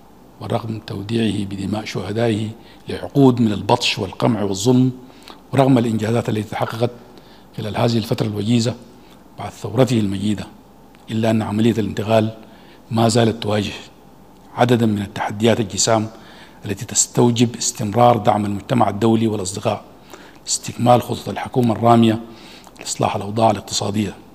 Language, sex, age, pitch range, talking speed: Arabic, male, 50-69, 105-115 Hz, 110 wpm